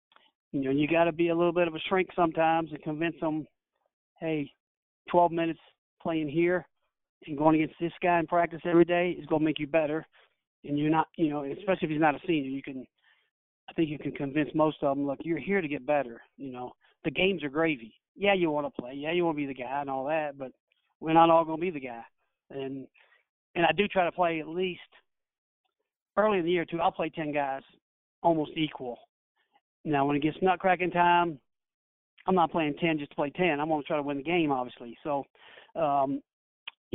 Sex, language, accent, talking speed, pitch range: male, English, American, 225 wpm, 145-170 Hz